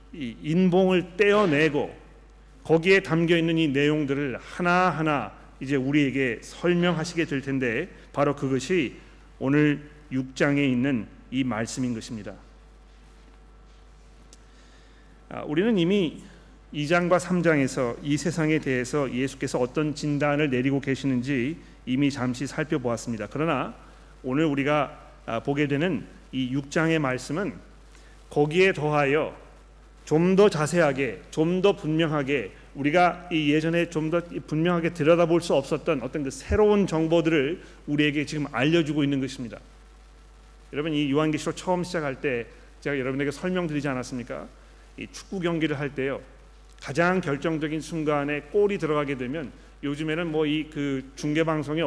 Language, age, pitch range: Korean, 40-59, 140-165 Hz